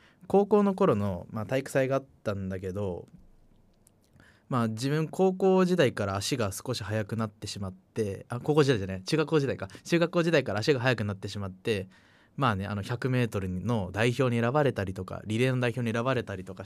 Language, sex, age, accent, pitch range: Japanese, male, 20-39, native, 110-160 Hz